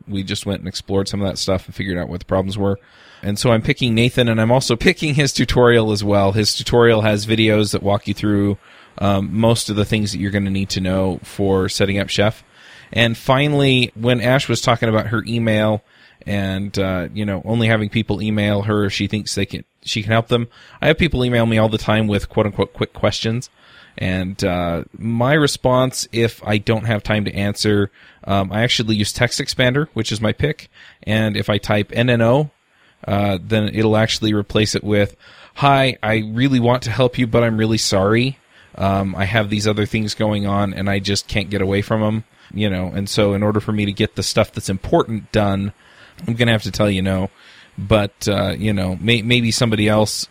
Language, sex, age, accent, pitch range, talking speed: English, male, 20-39, American, 100-115 Hz, 215 wpm